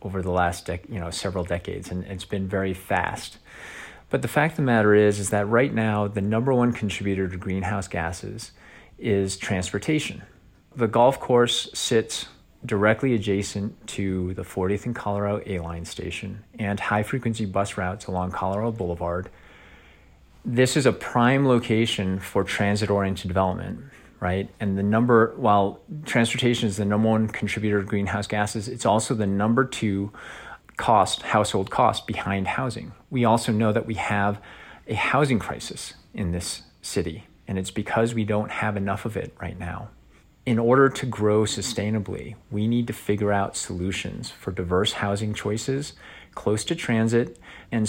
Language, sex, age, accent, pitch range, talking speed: English, male, 30-49, American, 95-115 Hz, 160 wpm